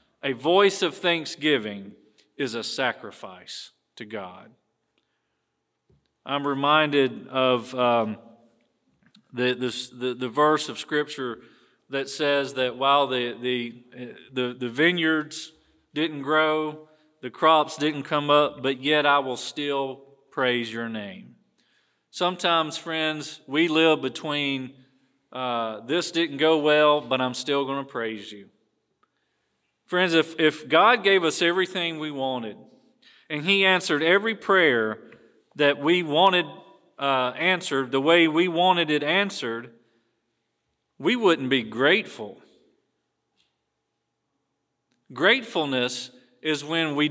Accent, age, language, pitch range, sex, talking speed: American, 40-59, English, 125-160 Hz, male, 115 wpm